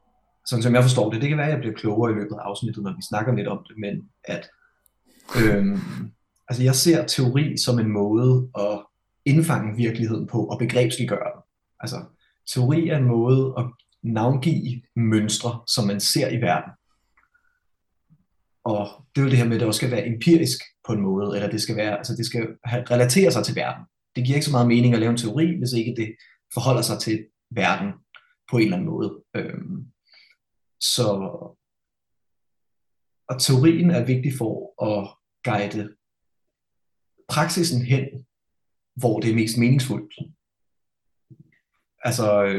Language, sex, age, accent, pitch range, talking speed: Danish, male, 30-49, native, 110-135 Hz, 165 wpm